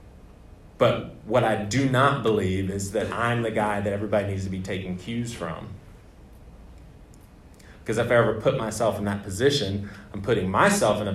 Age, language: 30-49, English